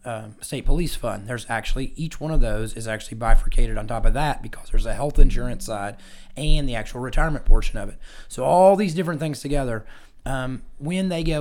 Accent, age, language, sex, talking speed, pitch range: American, 30-49, English, male, 210 wpm, 115-145 Hz